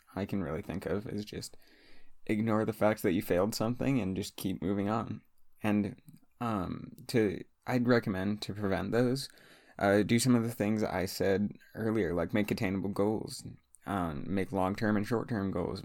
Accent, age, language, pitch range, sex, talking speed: American, 20-39, English, 95-110 Hz, male, 175 wpm